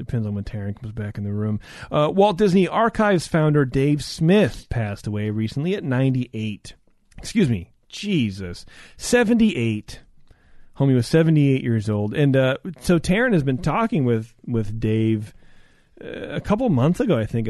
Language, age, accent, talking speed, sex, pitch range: English, 30-49, American, 160 wpm, male, 110-155 Hz